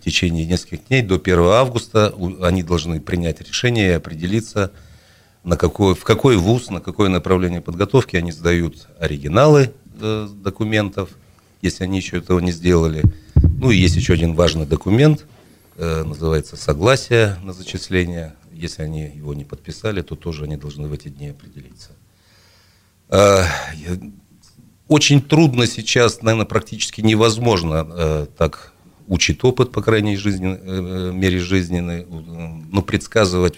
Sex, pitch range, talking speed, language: male, 85-105 Hz, 130 wpm, Russian